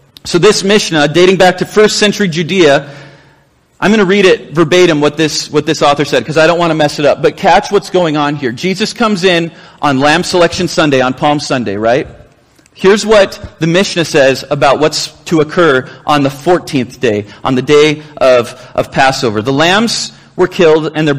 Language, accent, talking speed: English, American, 200 wpm